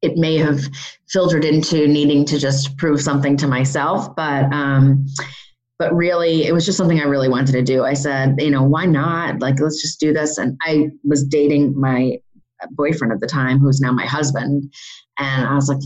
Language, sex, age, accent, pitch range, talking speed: English, female, 30-49, American, 140-170 Hz, 200 wpm